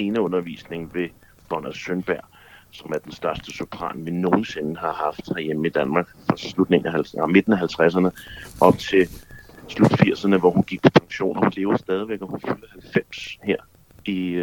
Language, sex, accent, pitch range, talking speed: Danish, male, native, 85-105 Hz, 165 wpm